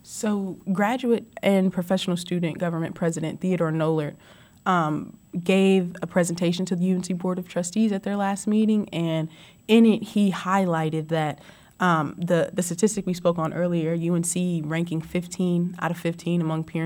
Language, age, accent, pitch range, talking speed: English, 20-39, American, 165-200 Hz, 160 wpm